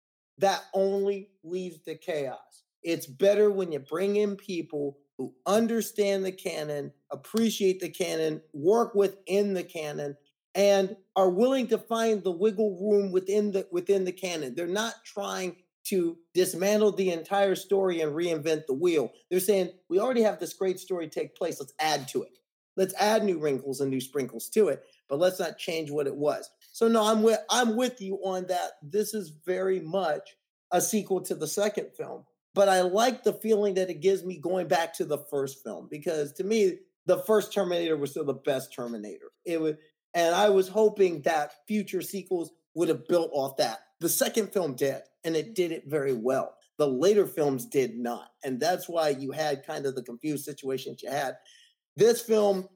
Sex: male